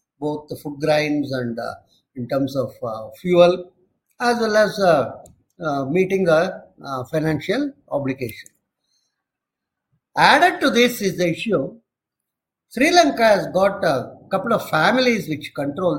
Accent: Indian